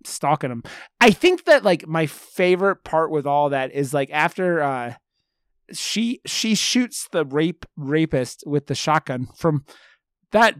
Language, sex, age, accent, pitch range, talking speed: English, male, 30-49, American, 135-175 Hz, 155 wpm